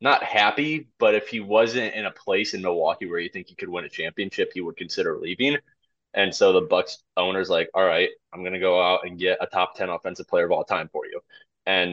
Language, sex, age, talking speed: English, male, 20-39, 245 wpm